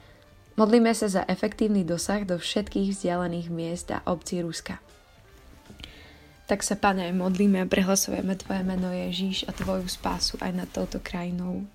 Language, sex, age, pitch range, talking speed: Slovak, female, 20-39, 175-195 Hz, 145 wpm